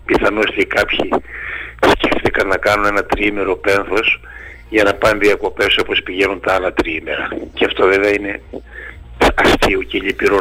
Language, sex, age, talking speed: Greek, male, 60-79, 145 wpm